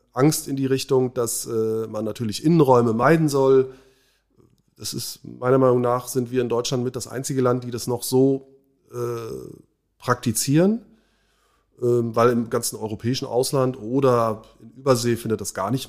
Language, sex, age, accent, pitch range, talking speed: German, male, 30-49, German, 110-140 Hz, 160 wpm